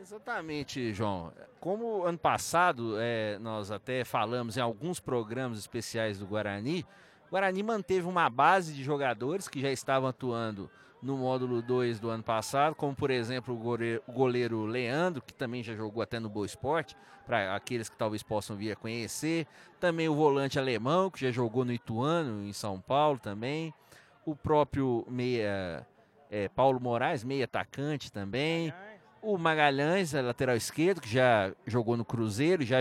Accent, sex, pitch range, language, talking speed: Brazilian, male, 120-160 Hz, Portuguese, 155 wpm